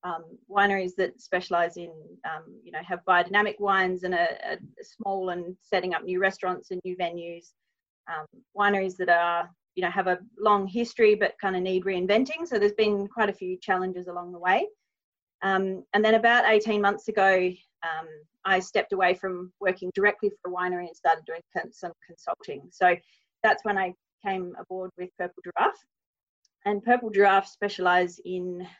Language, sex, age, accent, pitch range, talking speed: English, female, 30-49, Australian, 180-210 Hz, 175 wpm